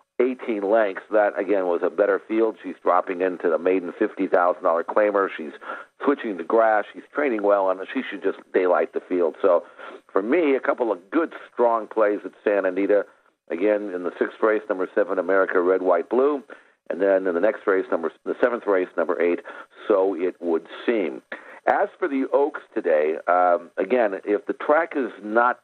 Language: English